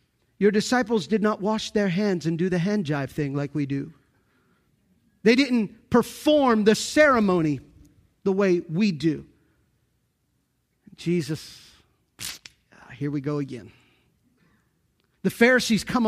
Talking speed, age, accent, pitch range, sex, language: 125 wpm, 40-59, American, 160-220 Hz, male, English